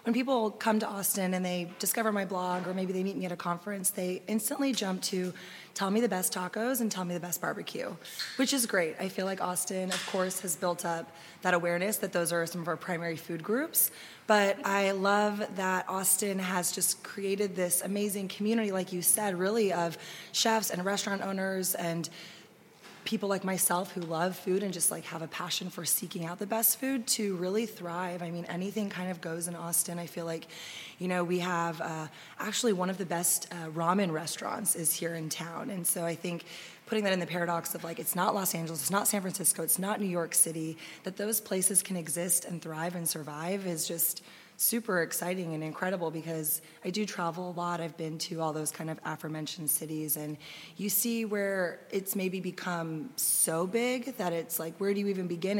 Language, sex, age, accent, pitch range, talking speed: English, female, 20-39, American, 170-200 Hz, 215 wpm